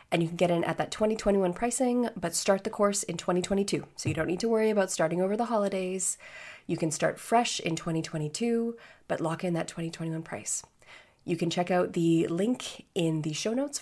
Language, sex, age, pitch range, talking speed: English, female, 20-39, 165-215 Hz, 210 wpm